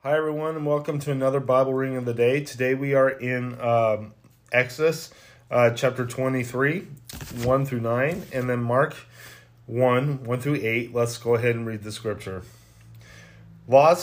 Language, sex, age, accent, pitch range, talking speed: English, male, 30-49, American, 120-145 Hz, 165 wpm